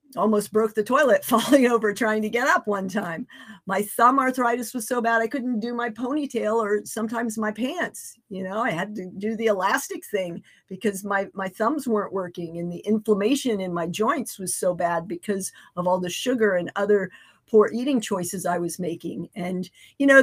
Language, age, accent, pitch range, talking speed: English, 50-69, American, 205-250 Hz, 200 wpm